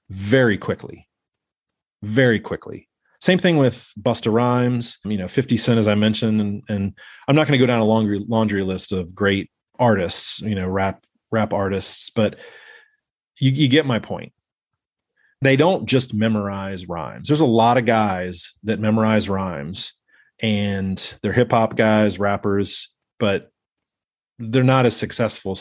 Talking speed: 155 wpm